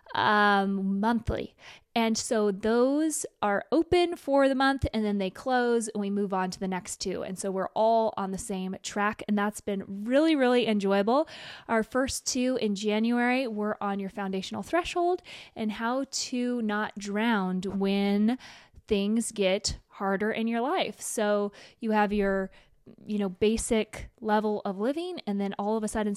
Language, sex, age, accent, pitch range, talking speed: English, female, 20-39, American, 200-240 Hz, 170 wpm